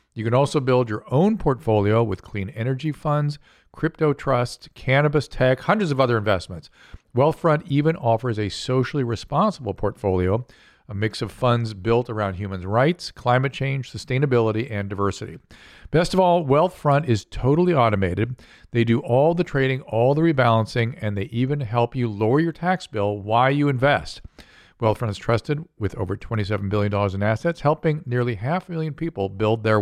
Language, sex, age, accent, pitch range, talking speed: English, male, 50-69, American, 110-150 Hz, 165 wpm